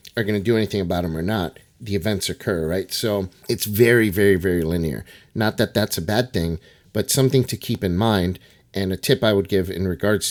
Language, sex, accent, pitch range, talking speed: English, male, American, 95-115 Hz, 220 wpm